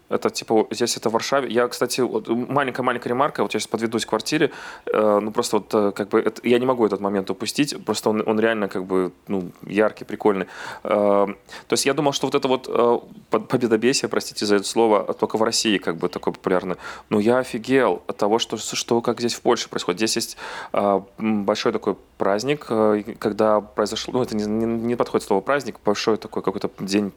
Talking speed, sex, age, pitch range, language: 195 wpm, male, 20-39, 105-120 Hz, Russian